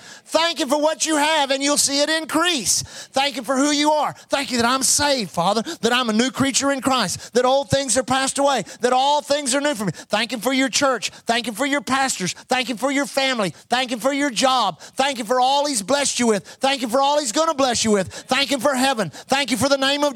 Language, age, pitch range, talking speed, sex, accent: English, 30-49, 240-290 Hz, 270 wpm, male, American